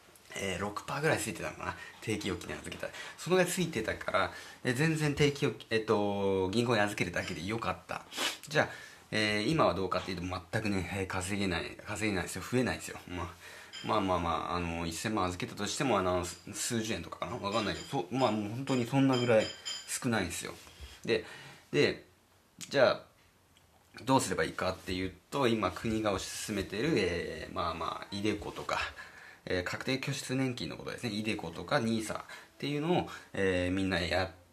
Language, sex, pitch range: Japanese, male, 90-120 Hz